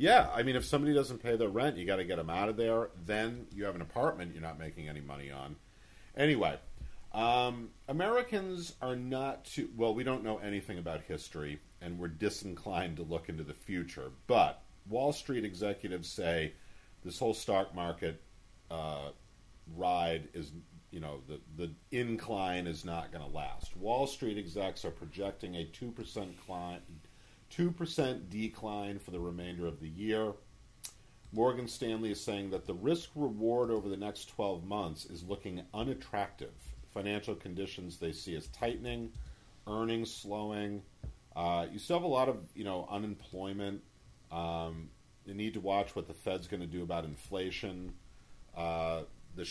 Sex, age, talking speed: male, 40-59, 165 wpm